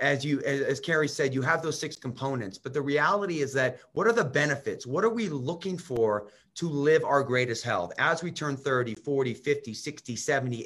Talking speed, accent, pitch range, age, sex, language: 215 wpm, American, 135-170 Hz, 30-49, male, English